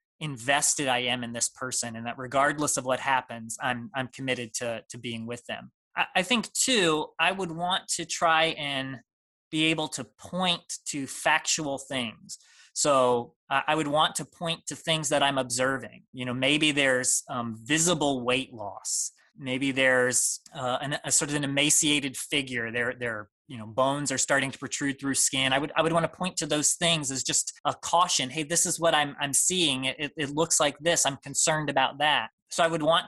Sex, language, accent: male, English, American